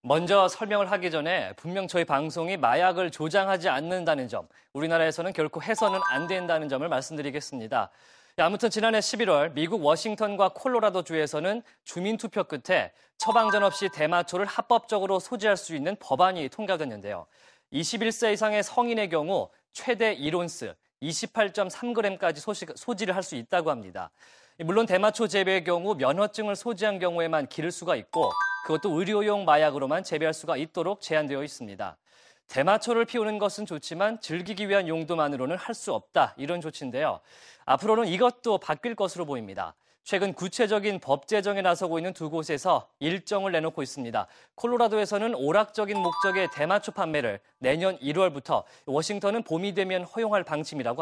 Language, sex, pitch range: Korean, male, 165-215 Hz